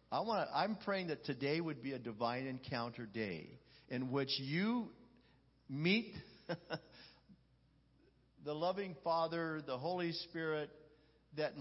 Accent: American